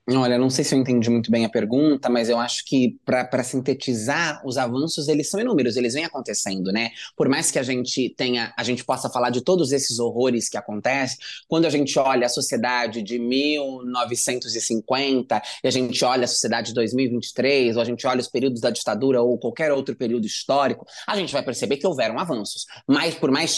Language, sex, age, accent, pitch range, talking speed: Portuguese, male, 20-39, Brazilian, 130-205 Hz, 205 wpm